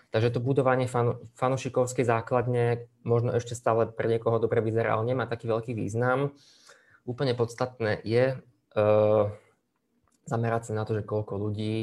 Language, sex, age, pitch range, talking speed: Slovak, male, 20-39, 110-120 Hz, 140 wpm